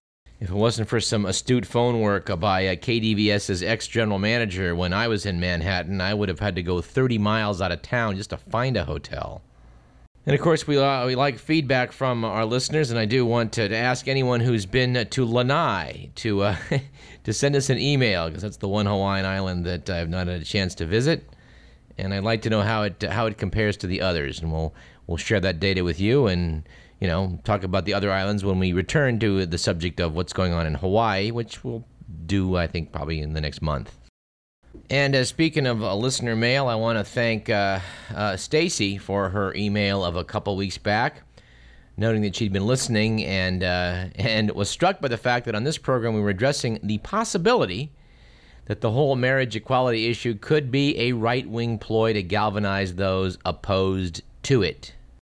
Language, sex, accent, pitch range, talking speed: English, male, American, 95-120 Hz, 205 wpm